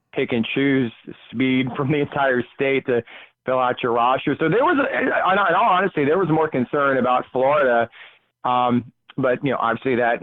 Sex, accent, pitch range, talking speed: male, American, 120-140 Hz, 175 wpm